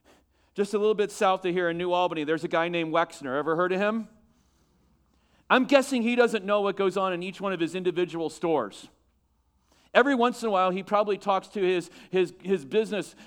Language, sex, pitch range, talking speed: English, male, 150-210 Hz, 215 wpm